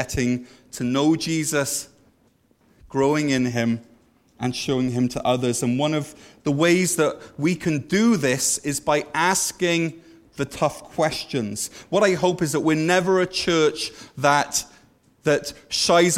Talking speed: 150 wpm